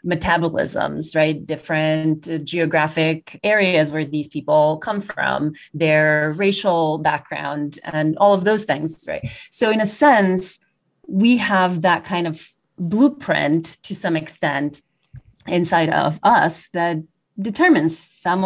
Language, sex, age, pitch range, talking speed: English, female, 30-49, 155-195 Hz, 125 wpm